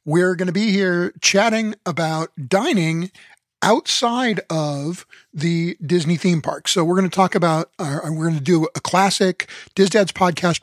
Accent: American